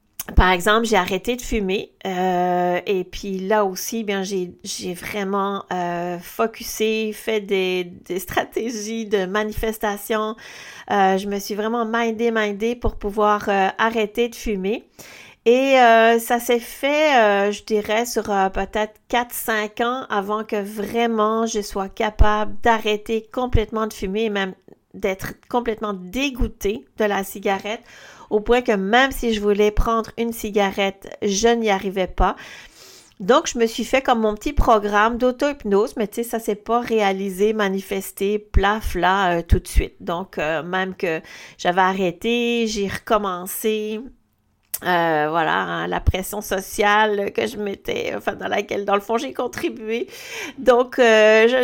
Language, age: French, 40-59